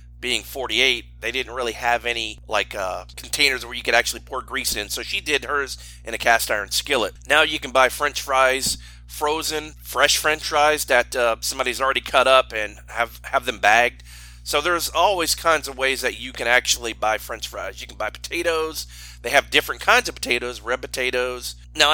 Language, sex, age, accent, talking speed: English, male, 30-49, American, 200 wpm